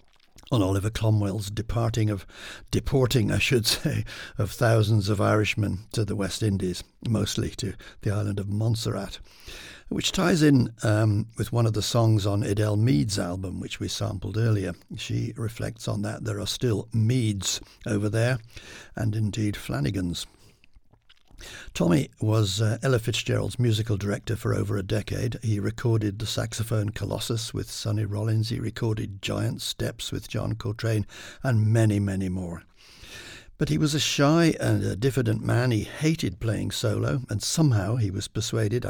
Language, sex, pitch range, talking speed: English, male, 105-115 Hz, 155 wpm